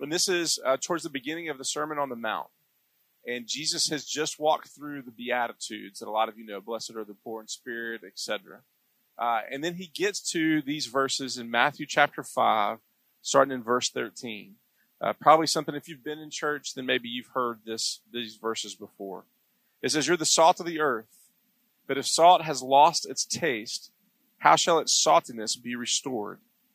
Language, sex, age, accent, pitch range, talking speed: English, male, 40-59, American, 125-165 Hz, 195 wpm